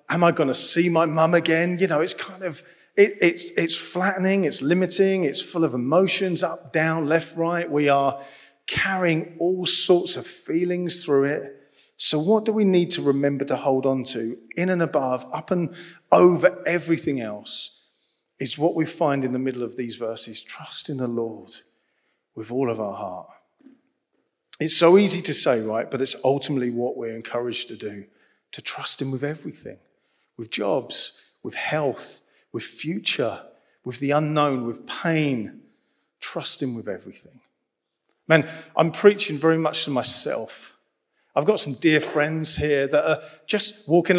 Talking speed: 170 wpm